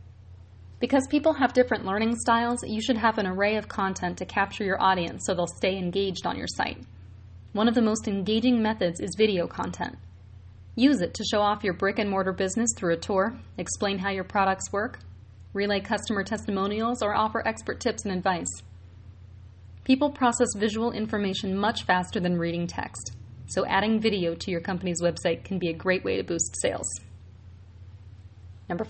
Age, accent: 30-49, American